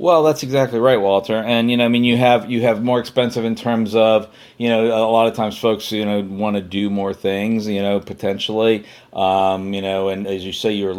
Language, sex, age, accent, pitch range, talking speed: English, male, 40-59, American, 100-115 Hz, 240 wpm